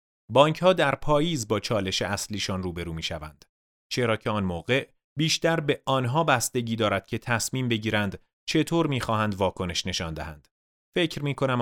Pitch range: 100-140 Hz